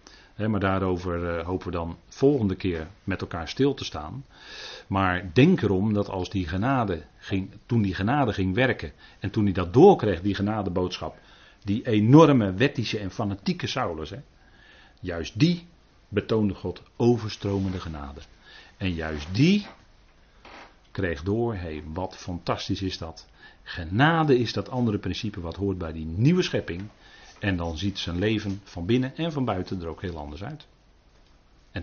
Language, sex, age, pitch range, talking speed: Dutch, male, 40-59, 90-125 Hz, 155 wpm